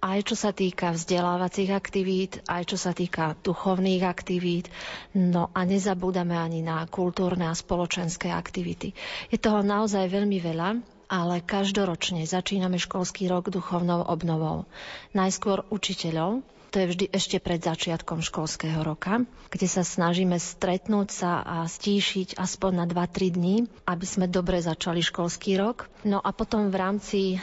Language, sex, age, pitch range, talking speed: Slovak, female, 40-59, 175-195 Hz, 140 wpm